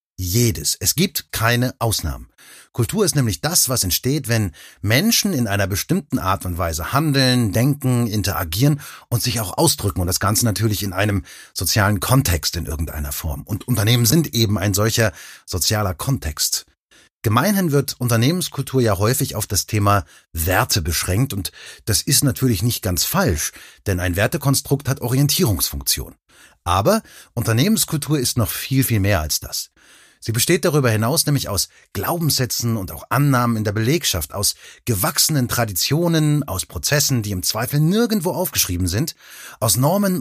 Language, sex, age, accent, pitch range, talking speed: German, male, 30-49, German, 100-140 Hz, 150 wpm